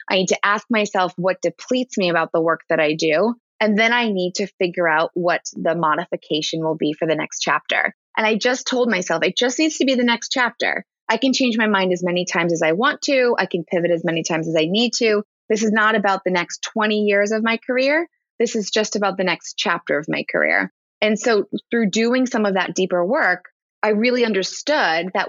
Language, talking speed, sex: English, 235 wpm, female